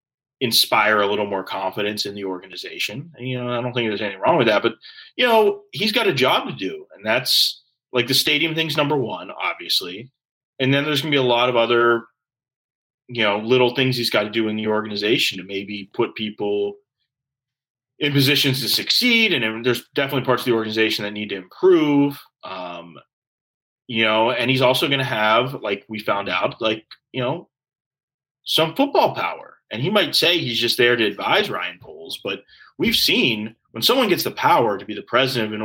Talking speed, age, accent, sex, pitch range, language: 205 wpm, 30-49, American, male, 110-140 Hz, English